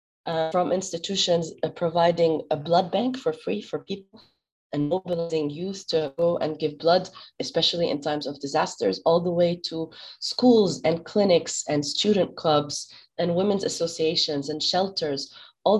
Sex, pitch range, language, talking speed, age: female, 150-175 Hz, English, 155 wpm, 30-49